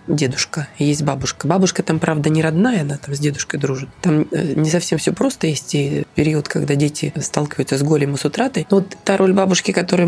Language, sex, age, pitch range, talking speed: Russian, female, 20-39, 150-180 Hz, 210 wpm